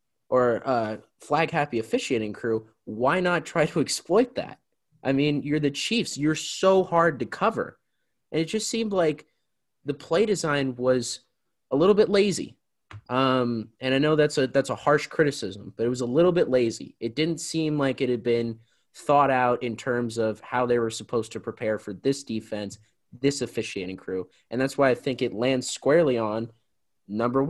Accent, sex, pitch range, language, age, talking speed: American, male, 110-140 Hz, English, 20-39, 190 wpm